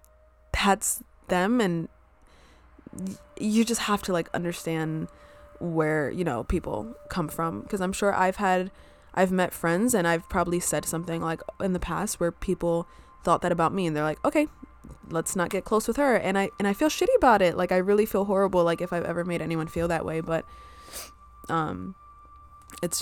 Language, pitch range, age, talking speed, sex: English, 160-185 Hz, 20-39, 190 wpm, female